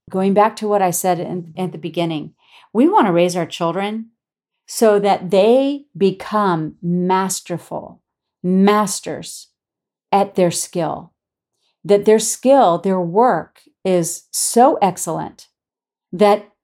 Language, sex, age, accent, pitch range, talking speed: English, female, 40-59, American, 180-215 Hz, 120 wpm